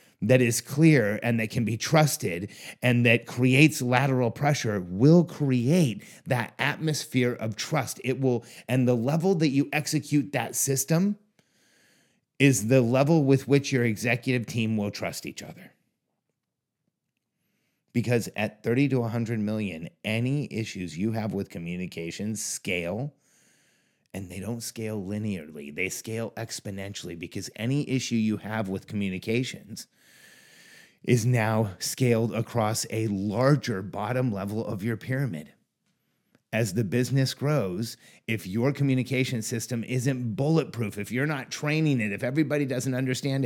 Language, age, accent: English, 30-49, American